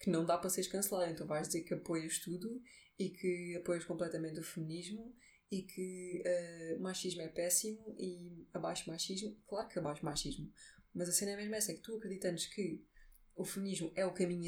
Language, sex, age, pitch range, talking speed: Portuguese, female, 20-39, 180-215 Hz, 205 wpm